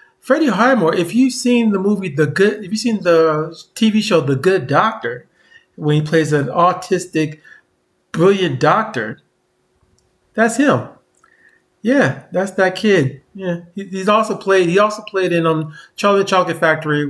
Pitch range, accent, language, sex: 150-210 Hz, American, English, male